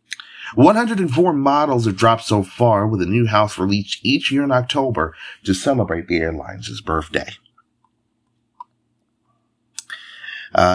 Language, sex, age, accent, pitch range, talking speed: English, male, 30-49, American, 100-135 Hz, 115 wpm